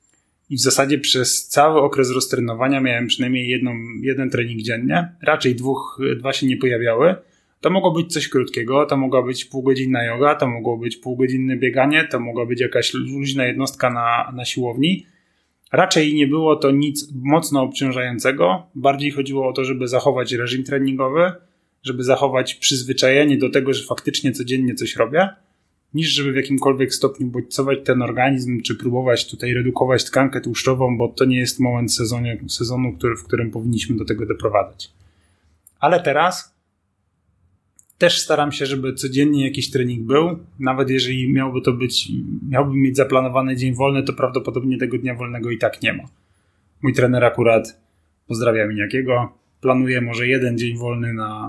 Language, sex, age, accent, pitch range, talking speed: Polish, male, 10-29, native, 120-135 Hz, 155 wpm